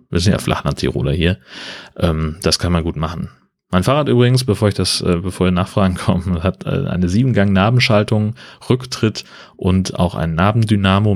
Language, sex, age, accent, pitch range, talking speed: German, male, 30-49, German, 90-105 Hz, 150 wpm